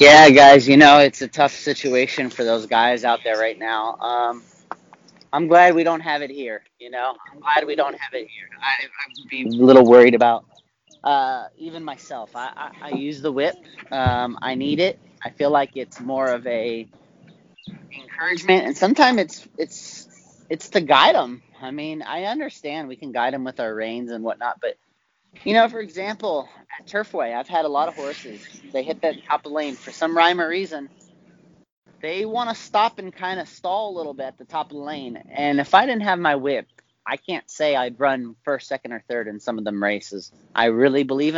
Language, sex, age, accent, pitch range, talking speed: English, male, 30-49, American, 125-160 Hz, 215 wpm